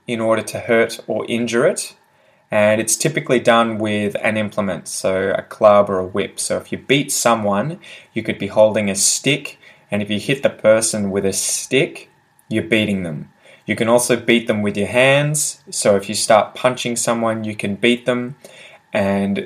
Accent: Australian